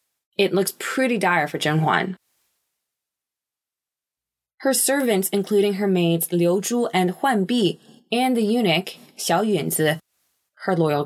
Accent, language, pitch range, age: American, English, 175-230 Hz, 20-39